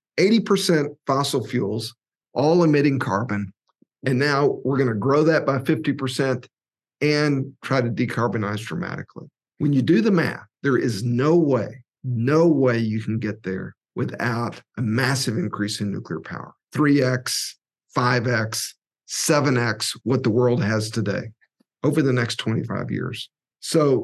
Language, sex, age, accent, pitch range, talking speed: English, male, 50-69, American, 110-140 Hz, 140 wpm